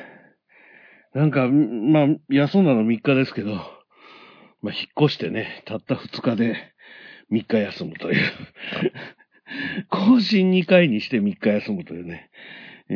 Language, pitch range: Japanese, 95-135 Hz